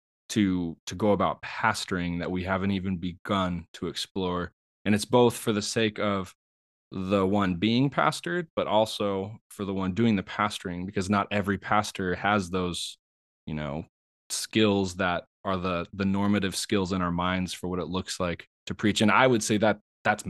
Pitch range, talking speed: 90-105 Hz, 185 wpm